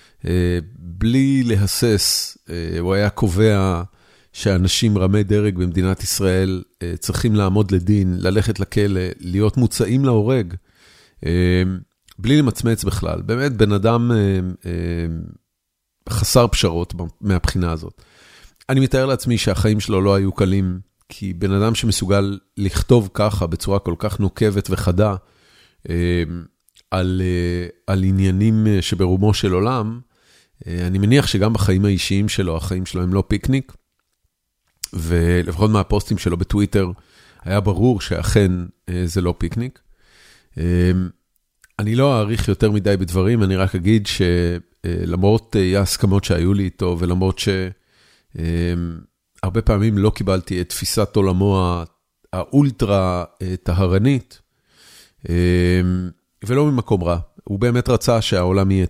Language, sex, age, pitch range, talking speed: Hebrew, male, 40-59, 90-105 Hz, 115 wpm